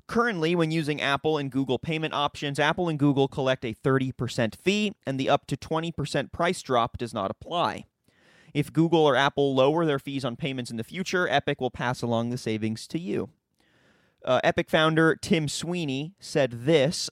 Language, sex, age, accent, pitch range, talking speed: English, male, 30-49, American, 125-155 Hz, 180 wpm